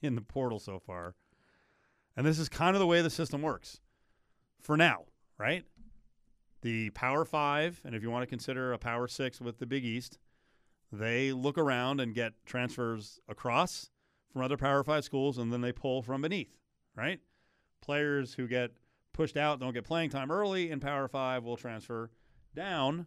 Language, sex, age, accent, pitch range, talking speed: English, male, 40-59, American, 115-140 Hz, 180 wpm